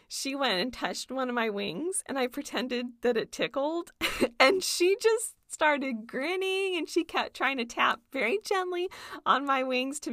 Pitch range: 245-335 Hz